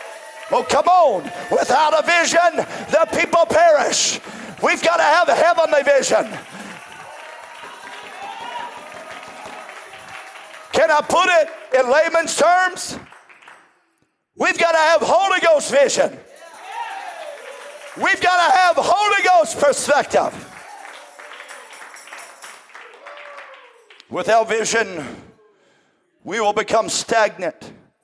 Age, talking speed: 50-69, 90 wpm